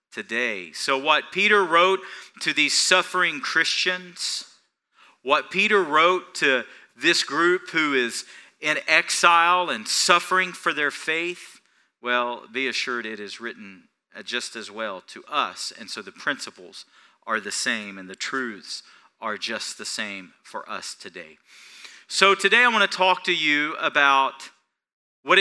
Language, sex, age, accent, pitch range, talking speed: English, male, 40-59, American, 160-210 Hz, 145 wpm